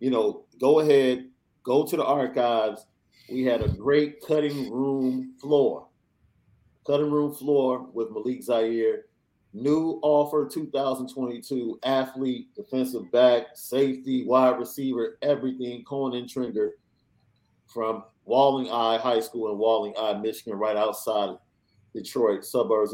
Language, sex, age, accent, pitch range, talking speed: English, male, 40-59, American, 115-135 Hz, 125 wpm